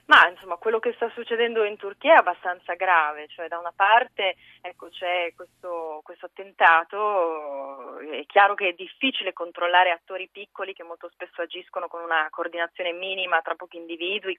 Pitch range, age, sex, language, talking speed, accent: 165-200 Hz, 20-39, female, Italian, 165 wpm, native